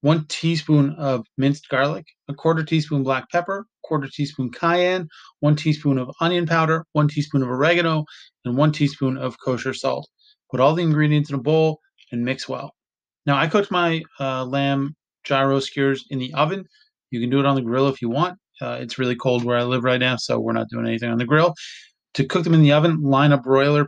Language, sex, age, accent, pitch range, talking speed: English, male, 30-49, American, 130-160 Hz, 215 wpm